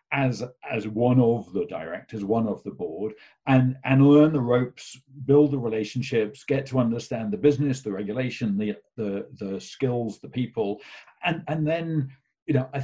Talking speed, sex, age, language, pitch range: 175 wpm, male, 50-69, English, 105-135 Hz